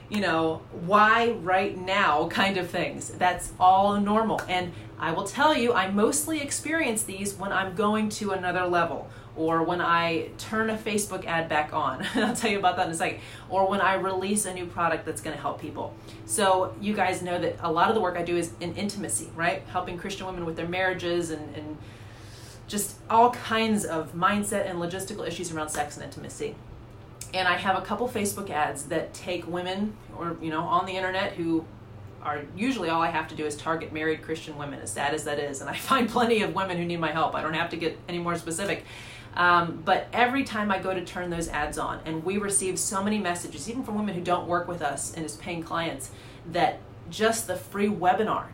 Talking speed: 220 wpm